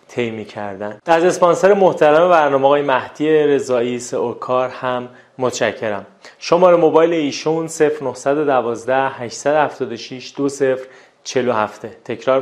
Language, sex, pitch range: Persian, male, 125-150 Hz